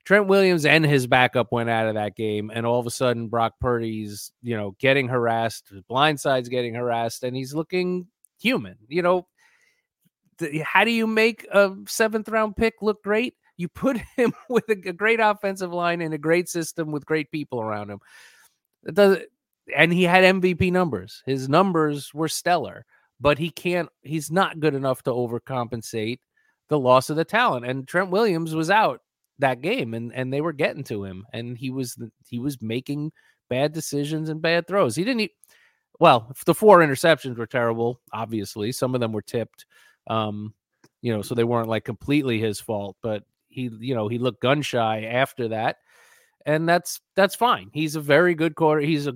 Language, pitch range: English, 120-175 Hz